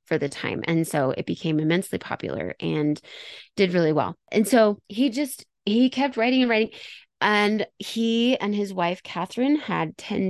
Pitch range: 170-230 Hz